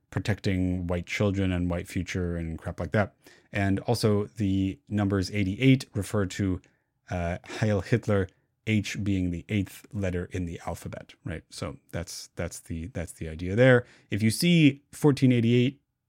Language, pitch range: English, 95-120 Hz